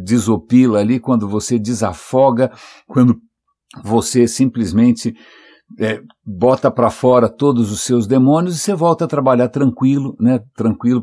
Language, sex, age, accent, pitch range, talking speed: English, male, 60-79, Brazilian, 105-125 Hz, 130 wpm